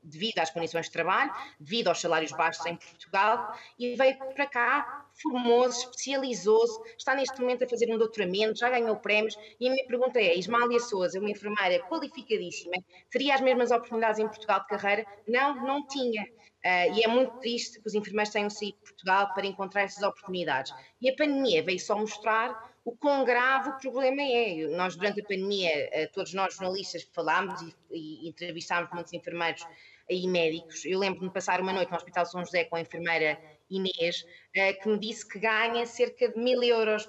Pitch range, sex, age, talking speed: 185-245 Hz, female, 20-39, 185 wpm